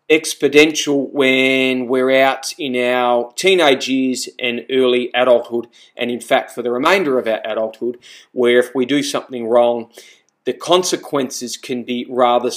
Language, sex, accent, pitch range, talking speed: English, male, Australian, 125-155 Hz, 150 wpm